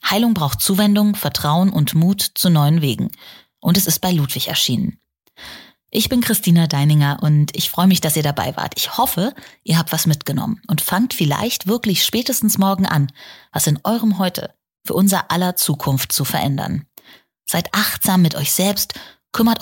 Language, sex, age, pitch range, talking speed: German, female, 30-49, 150-205 Hz, 170 wpm